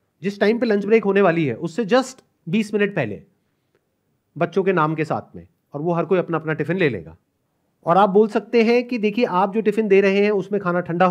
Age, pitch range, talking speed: 30-49, 155-205 Hz, 240 wpm